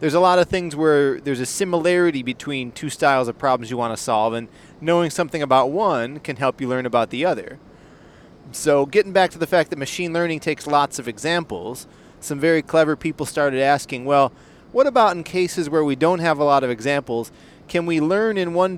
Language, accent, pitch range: English, American, 130-165 Hz